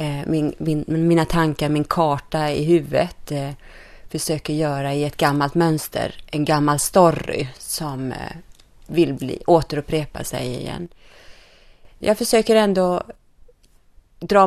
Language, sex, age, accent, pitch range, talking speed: Swedish, female, 30-49, native, 150-185 Hz, 100 wpm